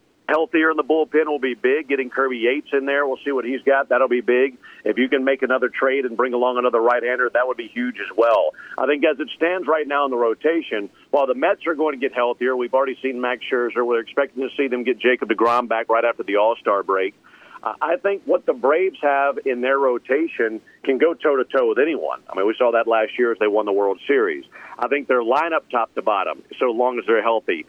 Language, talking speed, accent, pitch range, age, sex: English, 245 wpm, American, 125-160 Hz, 50-69, male